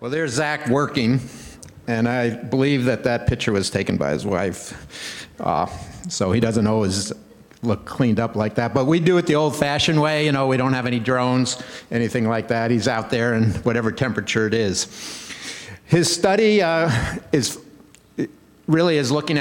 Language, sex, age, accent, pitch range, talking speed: English, male, 50-69, American, 120-145 Hz, 175 wpm